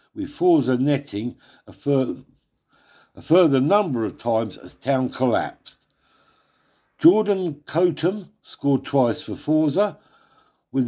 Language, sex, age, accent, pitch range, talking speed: English, male, 50-69, British, 120-165 Hz, 110 wpm